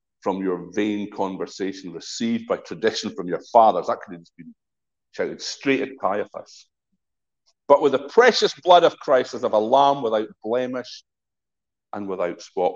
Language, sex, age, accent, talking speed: English, male, 50-69, British, 160 wpm